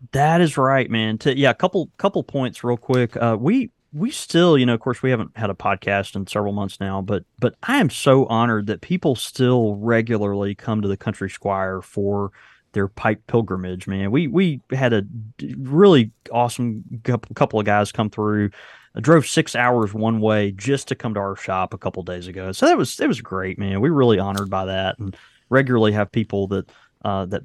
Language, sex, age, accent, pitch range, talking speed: English, male, 30-49, American, 100-130 Hz, 210 wpm